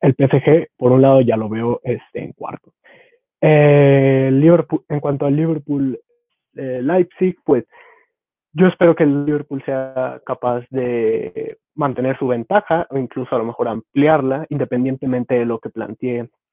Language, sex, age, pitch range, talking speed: Spanish, male, 20-39, 120-150 Hz, 150 wpm